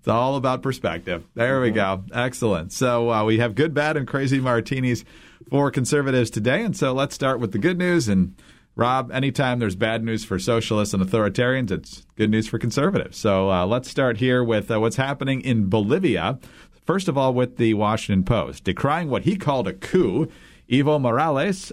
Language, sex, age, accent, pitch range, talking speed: English, male, 40-59, American, 110-140 Hz, 190 wpm